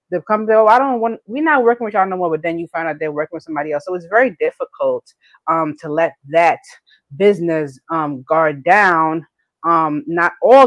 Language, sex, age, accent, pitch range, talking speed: English, female, 20-39, American, 155-200 Hz, 215 wpm